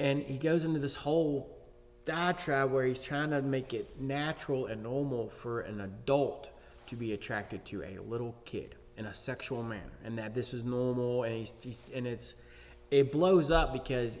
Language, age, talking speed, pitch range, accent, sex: English, 20-39, 185 wpm, 100-135 Hz, American, male